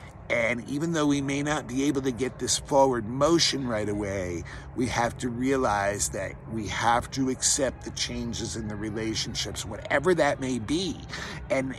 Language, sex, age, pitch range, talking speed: English, male, 50-69, 110-140 Hz, 175 wpm